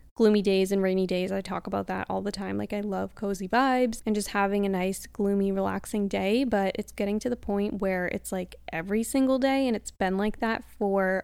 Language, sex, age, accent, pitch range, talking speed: English, female, 10-29, American, 195-220 Hz, 230 wpm